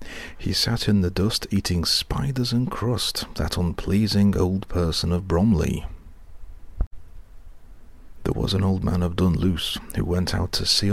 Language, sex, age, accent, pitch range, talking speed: English, male, 40-59, British, 80-105 Hz, 150 wpm